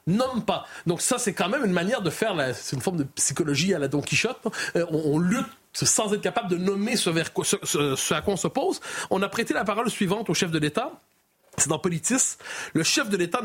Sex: male